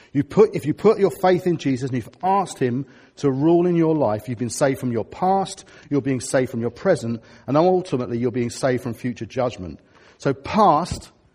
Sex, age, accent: male, 40-59, British